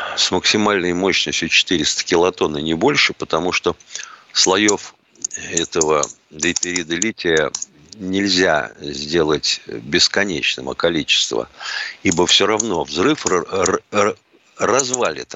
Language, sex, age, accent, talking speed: Russian, male, 50-69, native, 95 wpm